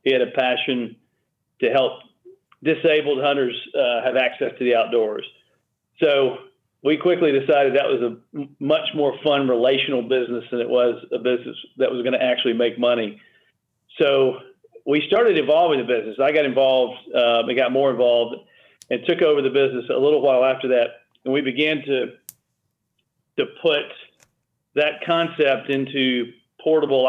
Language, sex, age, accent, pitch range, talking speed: English, male, 40-59, American, 125-150 Hz, 160 wpm